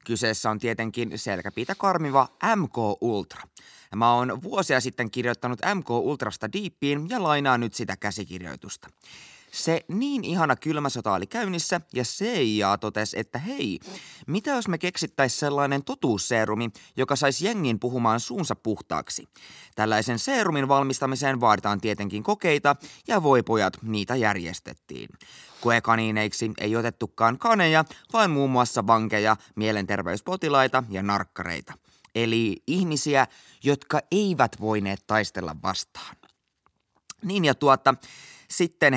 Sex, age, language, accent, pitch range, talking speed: male, 20-39, Finnish, native, 110-155 Hz, 120 wpm